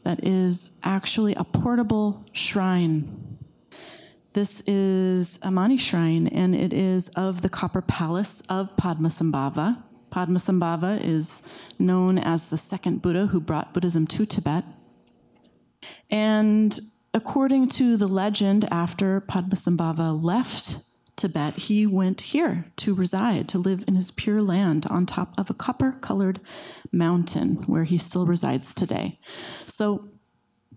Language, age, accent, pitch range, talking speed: English, 30-49, American, 175-215 Hz, 120 wpm